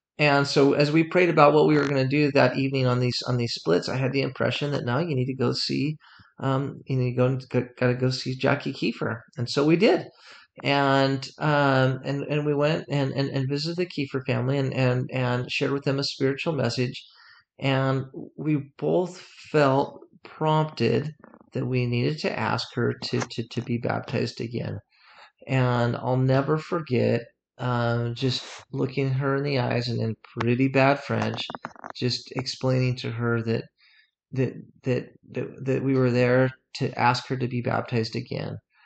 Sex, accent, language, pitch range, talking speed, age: male, American, English, 120-140 Hz, 185 wpm, 40-59